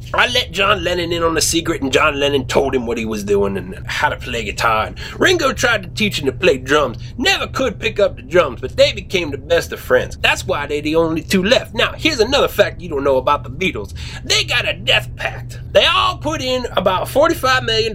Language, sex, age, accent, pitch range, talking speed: English, male, 30-49, American, 125-210 Hz, 245 wpm